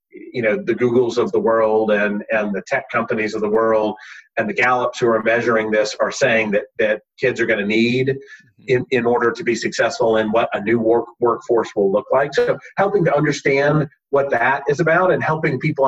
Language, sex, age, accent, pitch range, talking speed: English, male, 40-59, American, 110-145 Hz, 215 wpm